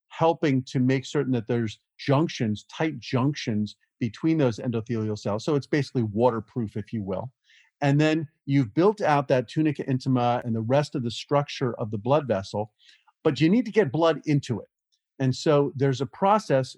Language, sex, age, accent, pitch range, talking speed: English, male, 40-59, American, 115-145 Hz, 180 wpm